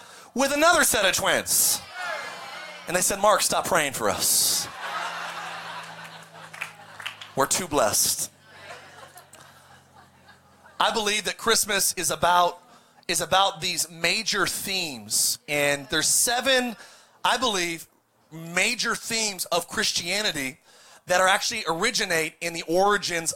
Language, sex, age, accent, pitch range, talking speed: English, male, 30-49, American, 185-250 Hz, 110 wpm